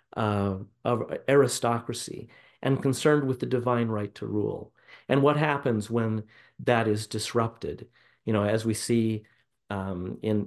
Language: English